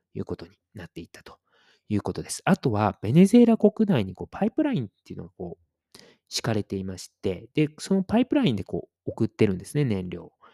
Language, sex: Japanese, male